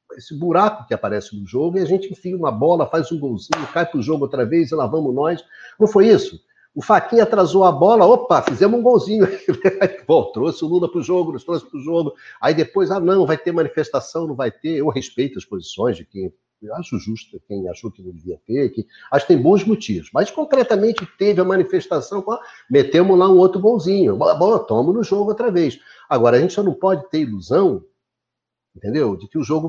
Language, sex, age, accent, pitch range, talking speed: Portuguese, male, 60-79, Brazilian, 130-190 Hz, 225 wpm